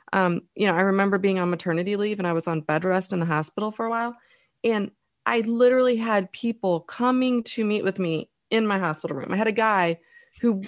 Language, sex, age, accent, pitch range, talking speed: English, female, 30-49, American, 170-210 Hz, 225 wpm